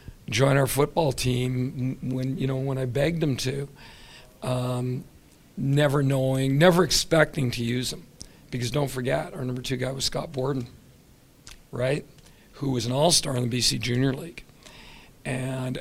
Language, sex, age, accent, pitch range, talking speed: English, male, 50-69, American, 125-145 Hz, 155 wpm